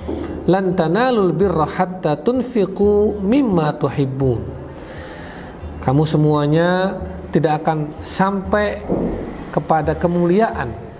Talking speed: 70 wpm